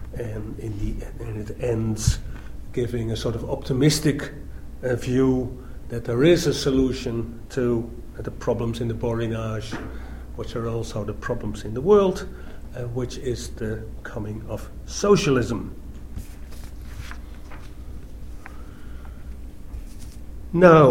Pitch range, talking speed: 110-130 Hz, 120 wpm